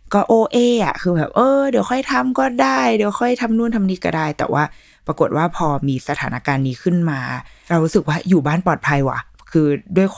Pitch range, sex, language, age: 150-190 Hz, female, Thai, 20-39